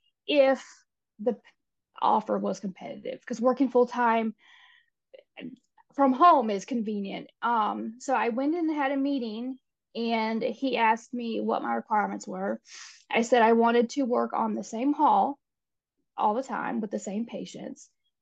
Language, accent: English, American